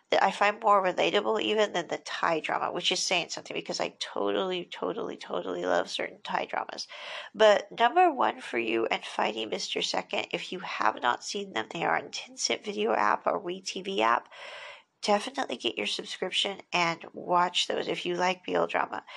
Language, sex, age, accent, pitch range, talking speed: English, female, 40-59, American, 180-240 Hz, 180 wpm